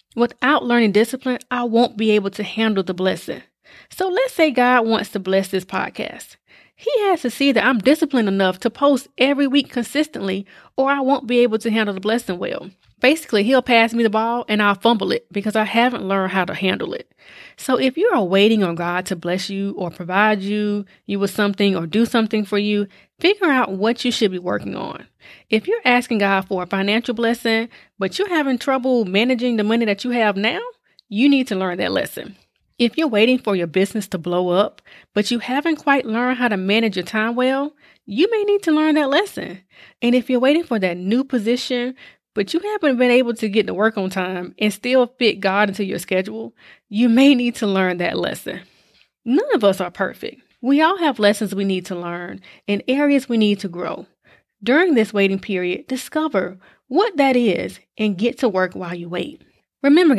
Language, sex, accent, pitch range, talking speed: English, female, American, 200-260 Hz, 210 wpm